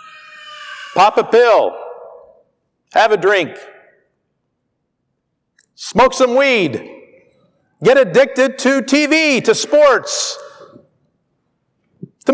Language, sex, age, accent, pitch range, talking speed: English, male, 50-69, American, 200-295 Hz, 80 wpm